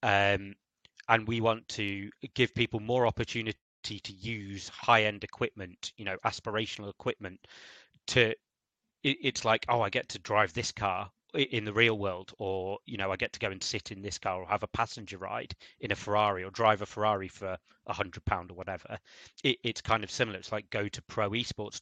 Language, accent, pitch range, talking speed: English, British, 95-110 Hz, 200 wpm